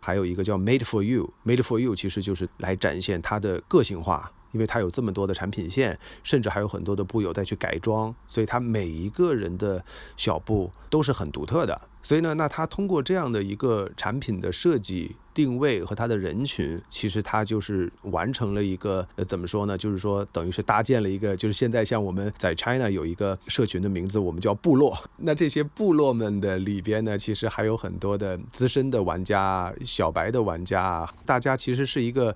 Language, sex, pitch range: Chinese, male, 100-130 Hz